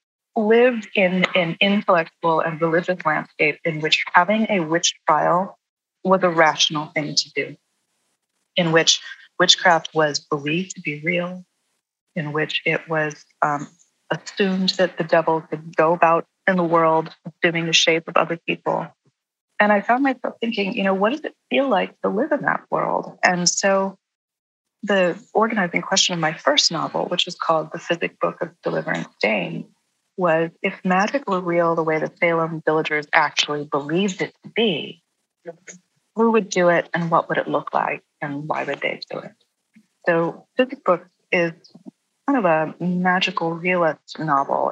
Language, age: English, 30-49